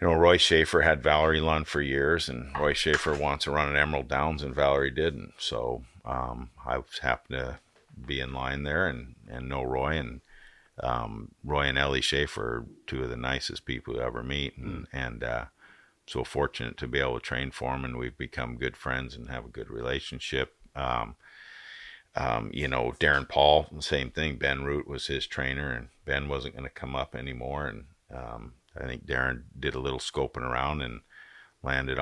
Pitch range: 65-75 Hz